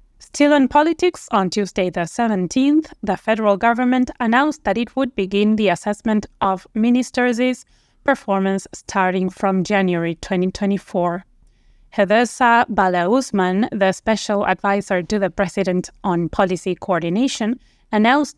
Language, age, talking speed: English, 20-39, 120 wpm